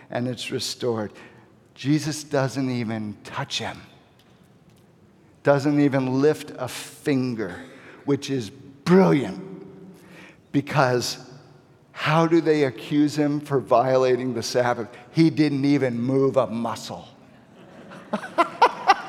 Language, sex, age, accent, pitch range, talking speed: English, male, 50-69, American, 130-195 Hz, 100 wpm